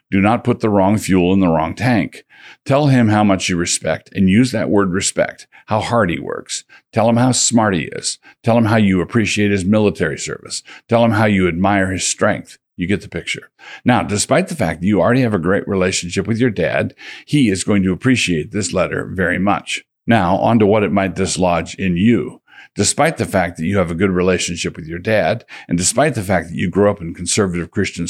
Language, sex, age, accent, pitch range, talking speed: English, male, 50-69, American, 90-115 Hz, 225 wpm